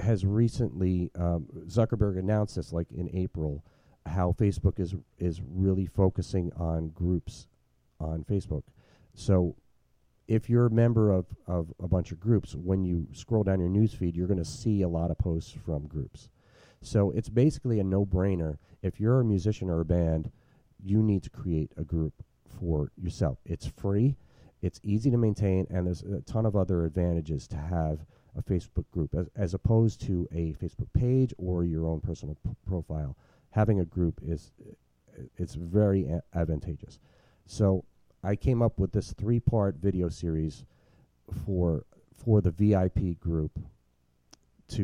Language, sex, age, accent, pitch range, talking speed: English, male, 40-59, American, 85-105 Hz, 160 wpm